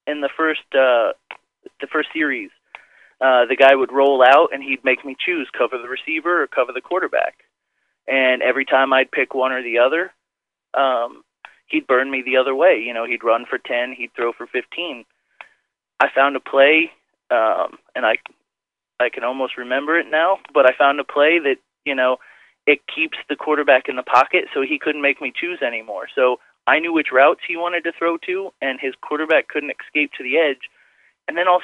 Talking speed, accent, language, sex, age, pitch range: 205 wpm, American, English, male, 30-49, 130-190 Hz